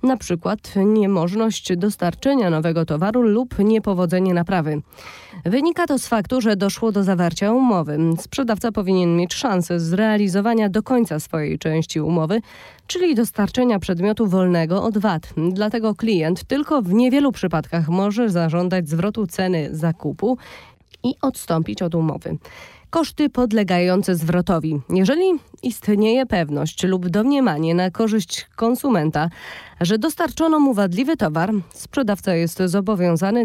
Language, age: Polish, 20-39